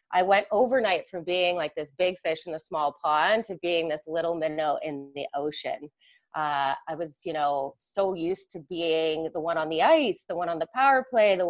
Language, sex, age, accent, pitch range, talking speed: English, female, 30-49, American, 155-190 Hz, 220 wpm